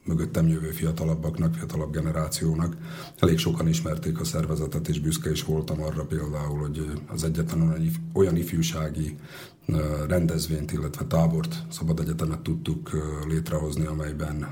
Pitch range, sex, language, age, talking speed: 75-80 Hz, male, Slovak, 40-59, 120 wpm